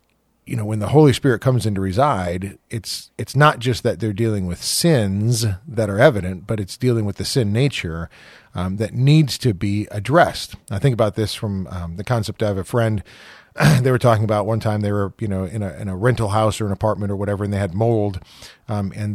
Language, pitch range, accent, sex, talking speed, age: English, 100-125 Hz, American, male, 230 wpm, 40-59